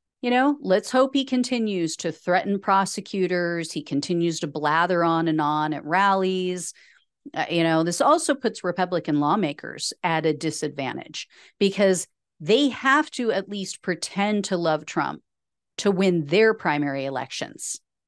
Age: 40-59